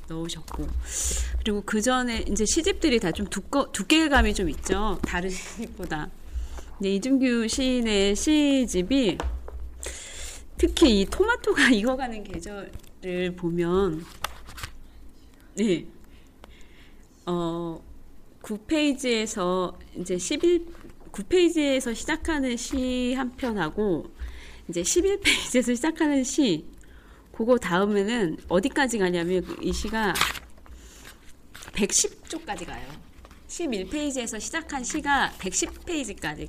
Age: 30-49